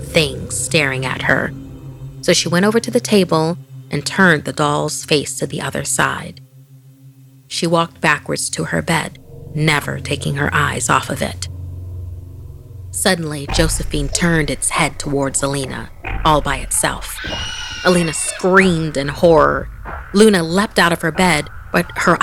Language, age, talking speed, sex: English, 30-49, 150 wpm, female